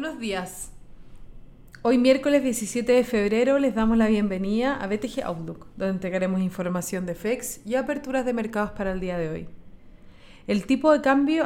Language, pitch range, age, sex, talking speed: Spanish, 200-240 Hz, 30-49, female, 170 wpm